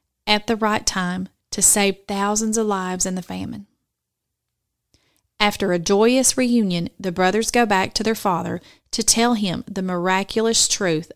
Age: 30-49